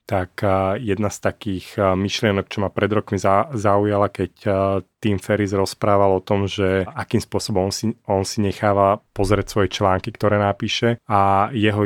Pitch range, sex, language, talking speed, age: 95-110 Hz, male, Slovak, 155 wpm, 30-49